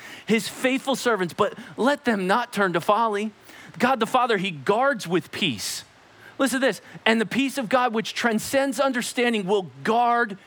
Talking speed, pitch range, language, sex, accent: 170 wpm, 205-270 Hz, English, male, American